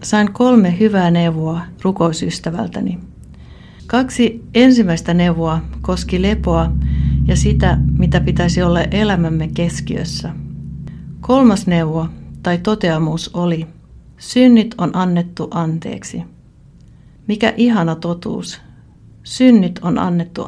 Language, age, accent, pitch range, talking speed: Finnish, 60-79, native, 170-215 Hz, 95 wpm